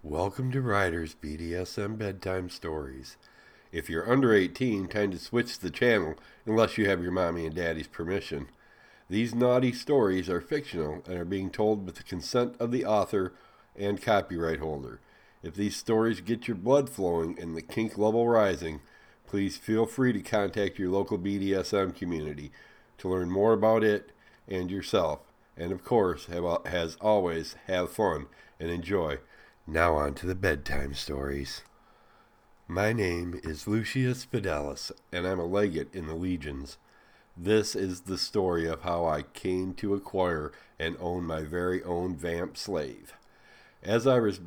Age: 60-79